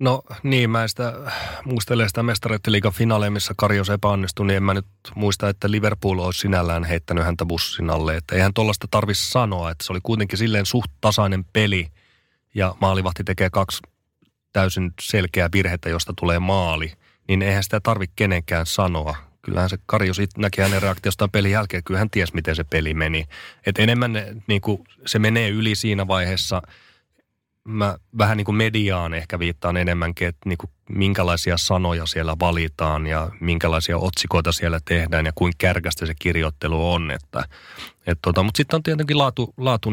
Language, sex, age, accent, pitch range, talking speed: Finnish, male, 30-49, native, 85-105 Hz, 160 wpm